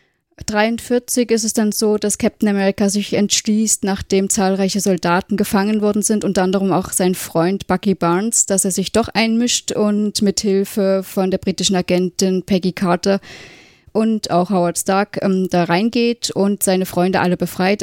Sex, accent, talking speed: female, German, 165 wpm